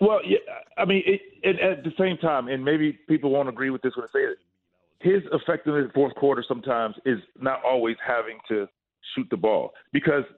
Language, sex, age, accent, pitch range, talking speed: English, male, 40-59, American, 135-175 Hz, 215 wpm